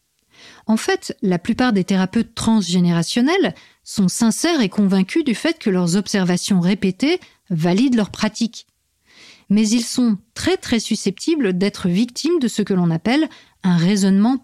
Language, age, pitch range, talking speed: French, 50-69, 190-240 Hz, 145 wpm